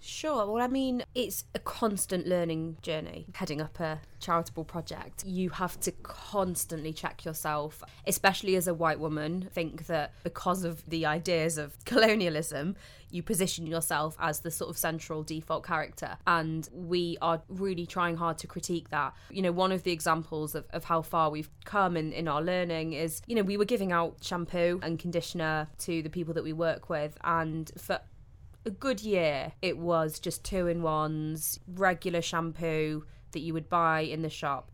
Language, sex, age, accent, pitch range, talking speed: English, female, 20-39, British, 160-185 Hz, 180 wpm